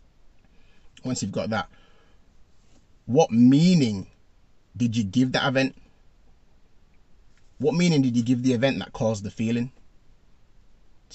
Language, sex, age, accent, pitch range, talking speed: English, male, 30-49, British, 95-125 Hz, 125 wpm